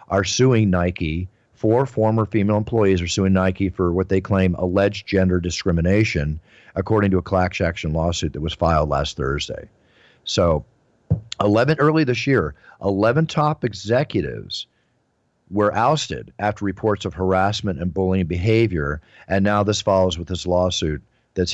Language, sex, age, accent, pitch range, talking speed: English, male, 50-69, American, 90-110 Hz, 150 wpm